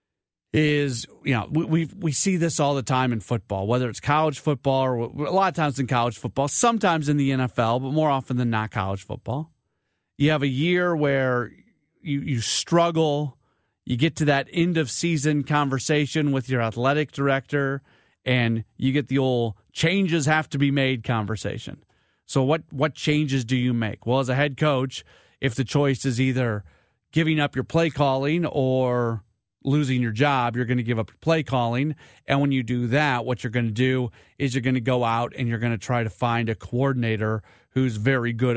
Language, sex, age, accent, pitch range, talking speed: English, male, 40-59, American, 120-145 Hz, 200 wpm